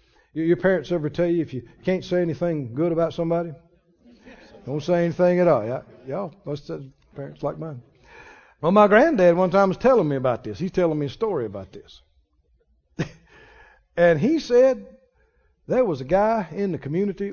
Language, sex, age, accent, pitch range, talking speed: English, male, 60-79, American, 130-190 Hz, 175 wpm